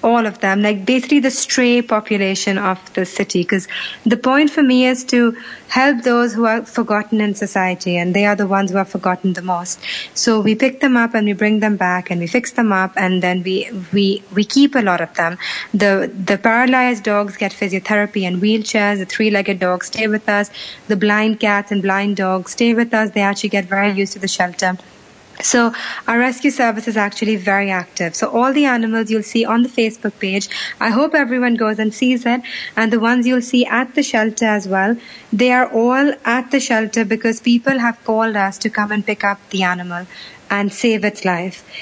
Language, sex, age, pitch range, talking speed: English, female, 30-49, 195-235 Hz, 210 wpm